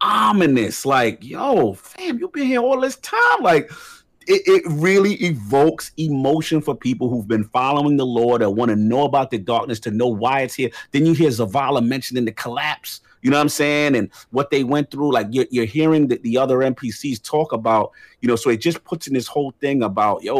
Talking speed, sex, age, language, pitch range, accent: 220 wpm, male, 40-59, English, 115-165 Hz, American